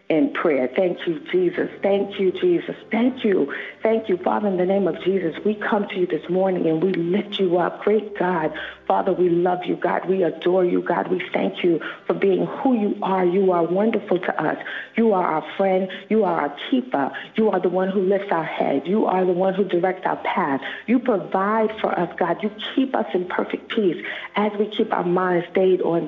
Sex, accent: female, American